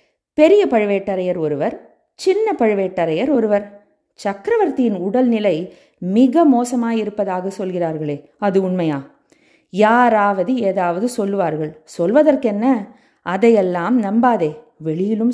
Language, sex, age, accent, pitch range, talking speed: Tamil, female, 20-39, native, 185-245 Hz, 80 wpm